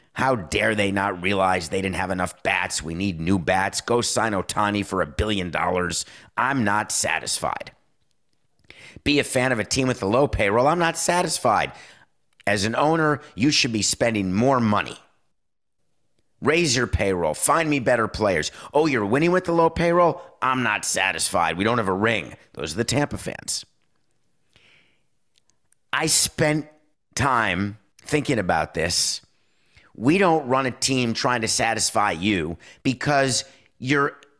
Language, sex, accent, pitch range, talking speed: English, male, American, 105-140 Hz, 155 wpm